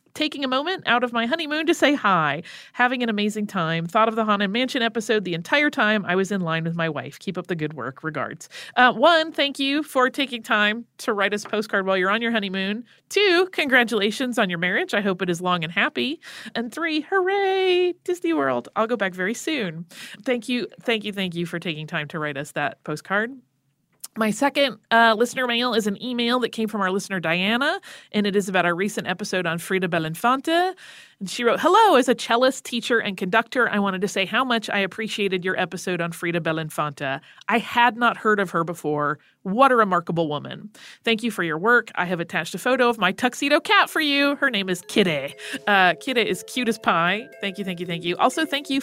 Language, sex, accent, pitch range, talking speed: English, female, American, 180-250 Hz, 225 wpm